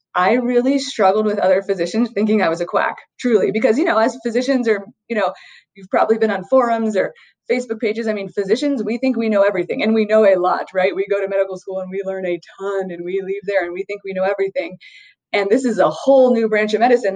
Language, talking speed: English, 250 wpm